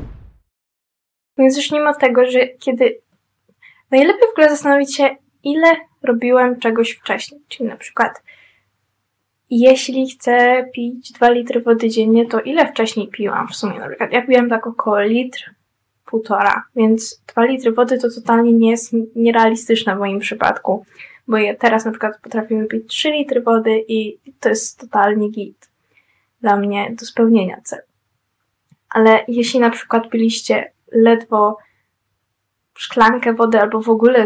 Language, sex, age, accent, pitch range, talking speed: Polish, female, 10-29, native, 225-265 Hz, 145 wpm